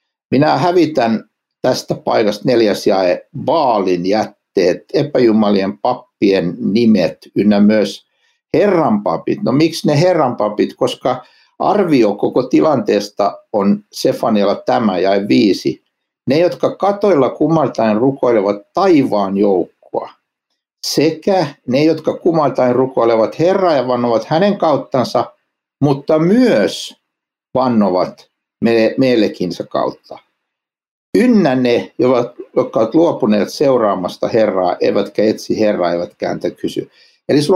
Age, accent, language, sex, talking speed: 60-79, native, Finnish, male, 100 wpm